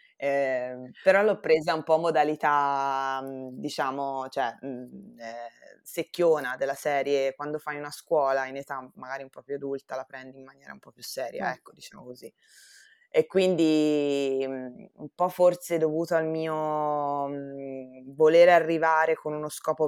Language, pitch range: Italian, 135-165 Hz